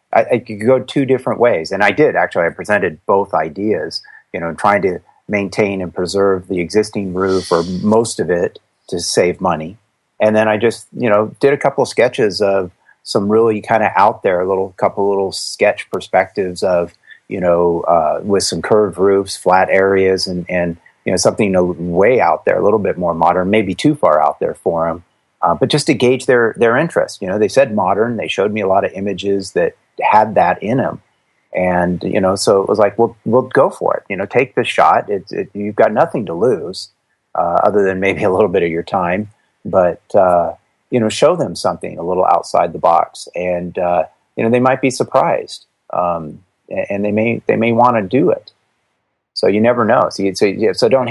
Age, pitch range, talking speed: 30-49, 90-115 Hz, 215 wpm